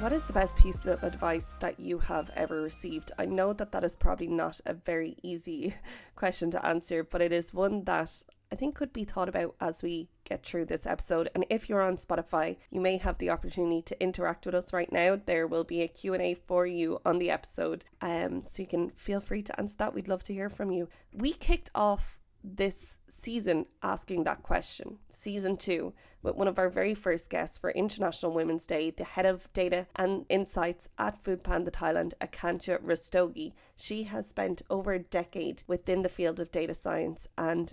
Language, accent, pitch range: English, Irish, 170-200 Hz